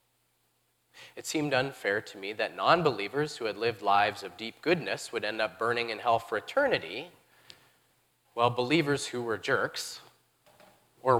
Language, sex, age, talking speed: English, male, 30-49, 150 wpm